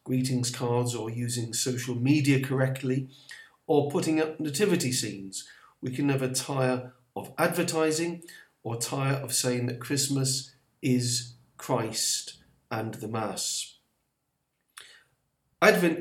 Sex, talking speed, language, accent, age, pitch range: male, 110 wpm, English, British, 40-59, 120-135 Hz